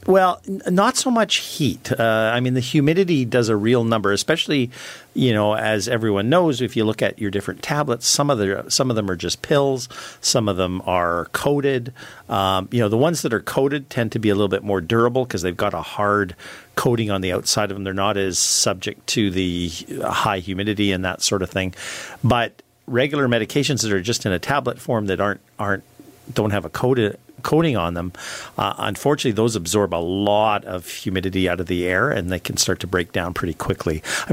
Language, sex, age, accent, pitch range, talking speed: English, male, 50-69, American, 95-125 Hz, 215 wpm